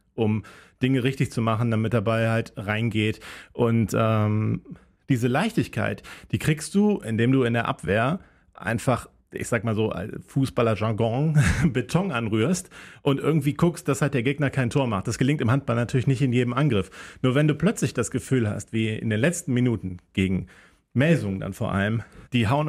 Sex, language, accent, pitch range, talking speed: male, German, German, 110-145 Hz, 175 wpm